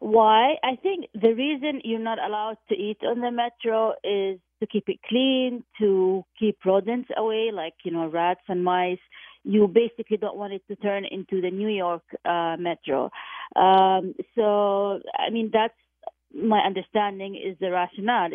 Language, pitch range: English, 185-220 Hz